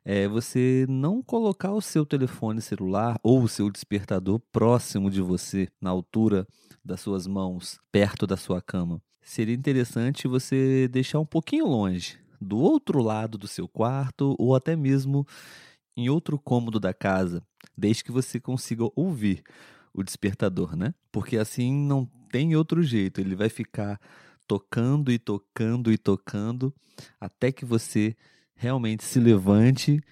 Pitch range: 100-130 Hz